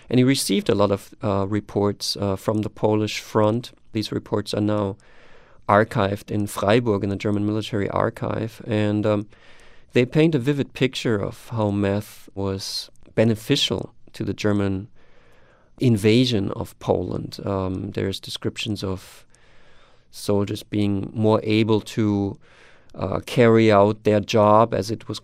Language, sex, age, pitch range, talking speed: English, male, 40-59, 100-115 Hz, 145 wpm